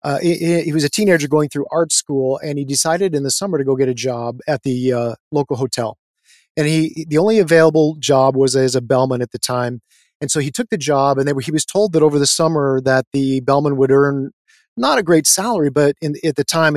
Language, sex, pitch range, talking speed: English, male, 135-160 Hz, 245 wpm